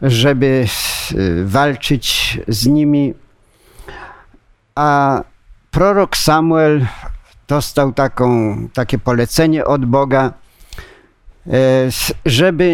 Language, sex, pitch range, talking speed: Polish, male, 130-155 Hz, 65 wpm